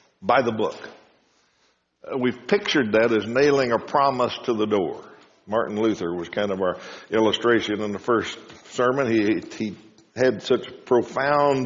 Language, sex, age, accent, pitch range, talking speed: English, male, 60-79, American, 110-140 Hz, 155 wpm